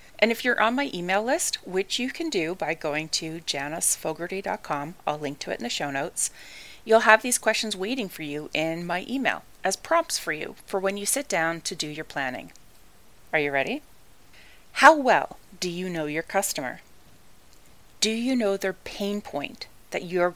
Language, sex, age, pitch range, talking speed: English, female, 30-49, 160-220 Hz, 190 wpm